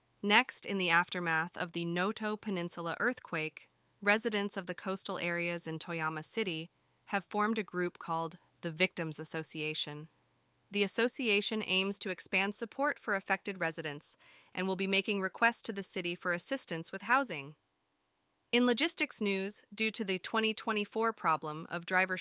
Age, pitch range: 20-39, 185-230 Hz